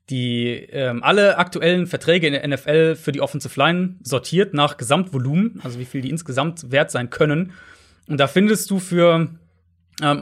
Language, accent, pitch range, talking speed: German, German, 130-170 Hz, 170 wpm